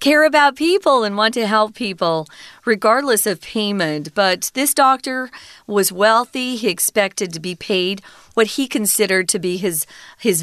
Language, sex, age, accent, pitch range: Chinese, female, 40-59, American, 190-260 Hz